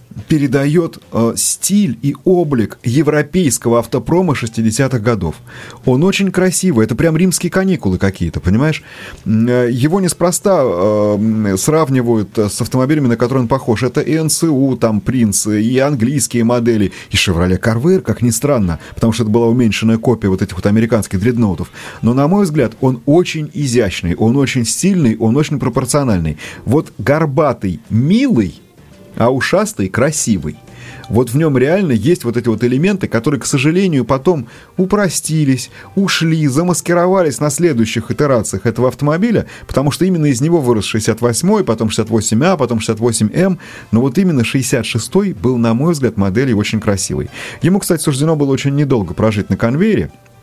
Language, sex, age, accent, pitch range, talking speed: Russian, male, 30-49, native, 115-155 Hz, 145 wpm